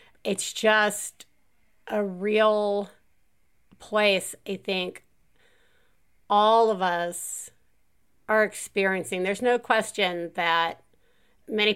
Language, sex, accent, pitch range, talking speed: English, female, American, 195-250 Hz, 85 wpm